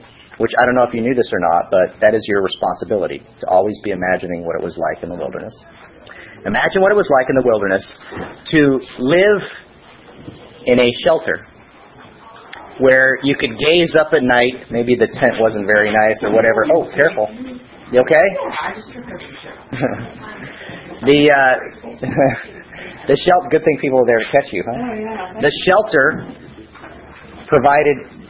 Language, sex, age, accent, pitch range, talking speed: English, male, 30-49, American, 120-170 Hz, 155 wpm